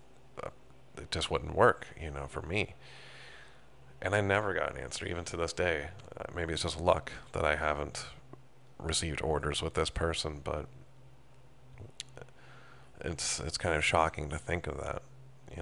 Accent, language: American, English